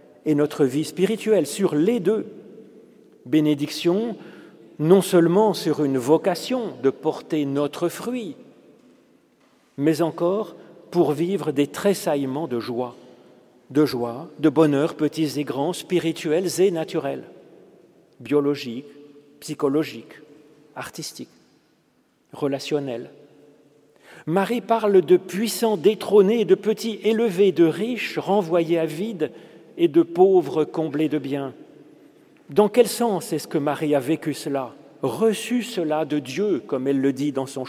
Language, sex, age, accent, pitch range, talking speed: French, male, 40-59, French, 145-190 Hz, 125 wpm